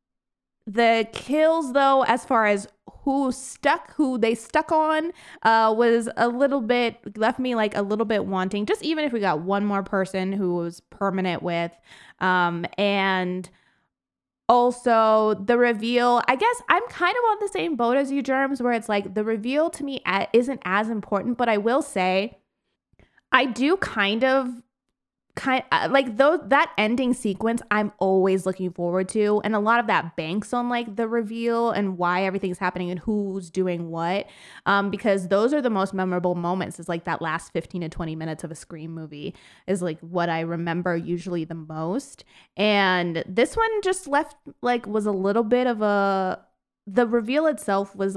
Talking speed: 180 wpm